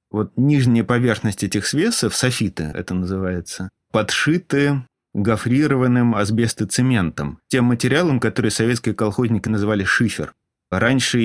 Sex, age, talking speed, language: male, 20-39, 100 wpm, Russian